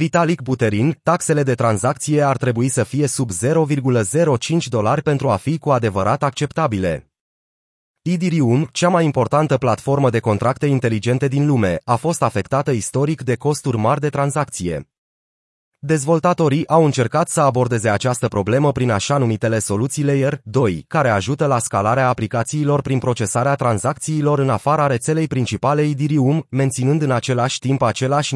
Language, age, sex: Romanian, 30-49, male